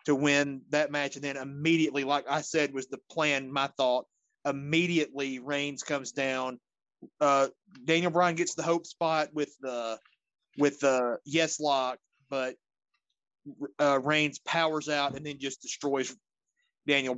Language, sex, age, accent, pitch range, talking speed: English, male, 30-49, American, 130-155 Hz, 145 wpm